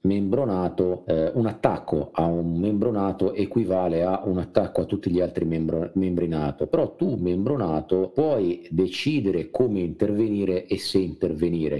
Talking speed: 145 wpm